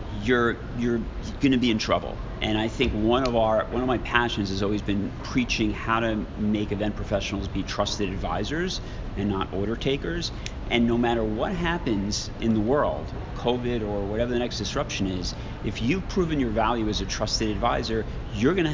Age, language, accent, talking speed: 40-59, English, American, 185 wpm